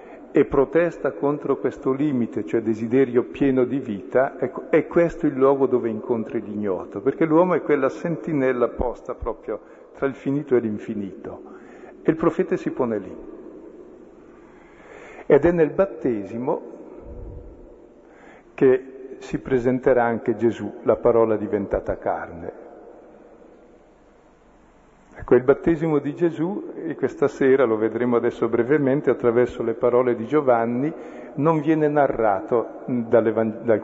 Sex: male